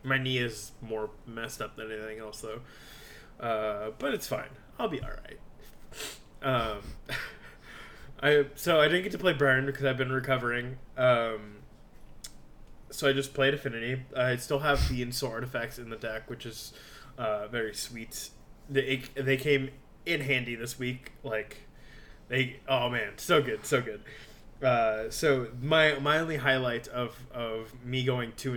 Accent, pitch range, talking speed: American, 115-140 Hz, 165 wpm